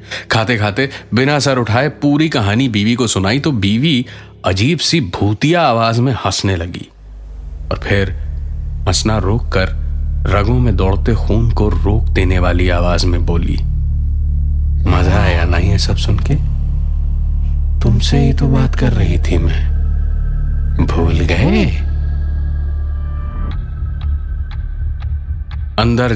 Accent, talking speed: native, 115 wpm